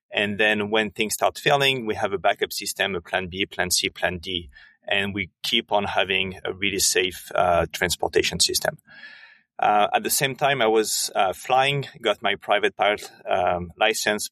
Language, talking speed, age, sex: English, 185 wpm, 30-49, male